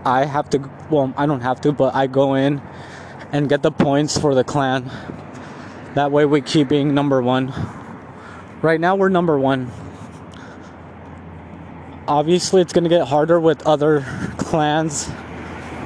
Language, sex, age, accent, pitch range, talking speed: English, male, 20-39, American, 105-155 Hz, 150 wpm